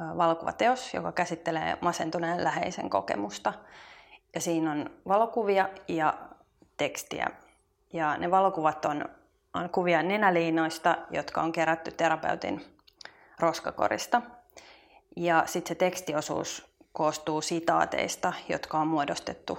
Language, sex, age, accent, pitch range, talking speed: Finnish, female, 30-49, native, 165-190 Hz, 100 wpm